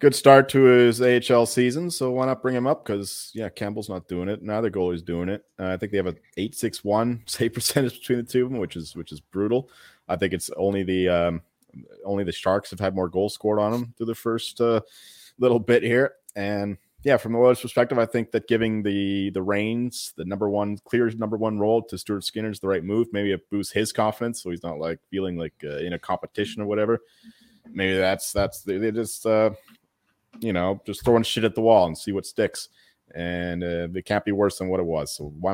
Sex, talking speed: male, 240 wpm